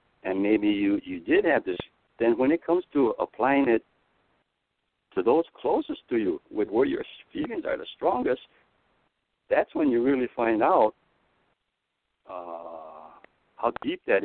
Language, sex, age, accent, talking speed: English, male, 60-79, American, 150 wpm